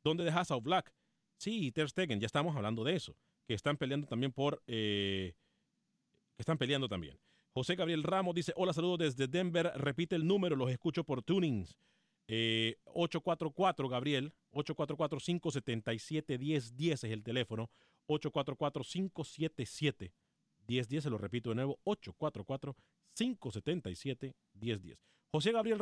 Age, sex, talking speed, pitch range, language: 40-59, male, 125 wpm, 120-170 Hz, Spanish